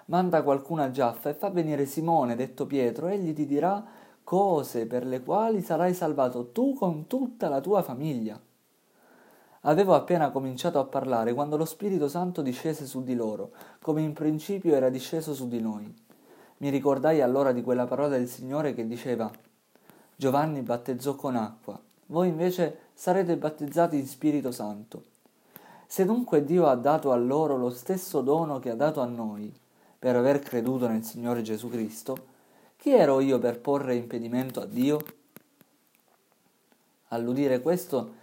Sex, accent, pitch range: male, native, 125-165 Hz